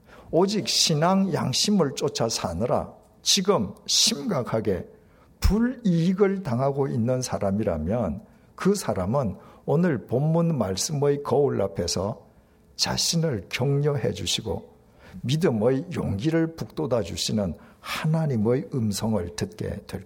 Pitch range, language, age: 105-165 Hz, Korean, 60-79